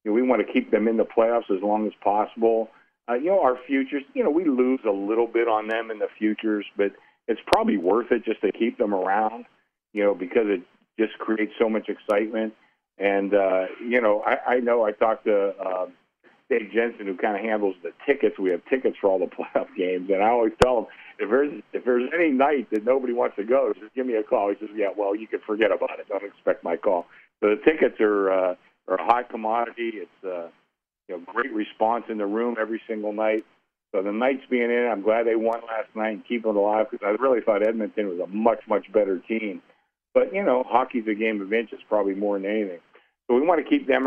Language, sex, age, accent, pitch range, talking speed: English, male, 50-69, American, 105-125 Hz, 240 wpm